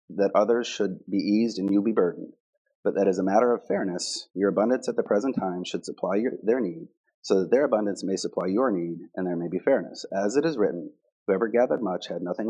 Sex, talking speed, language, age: male, 230 wpm, English, 30-49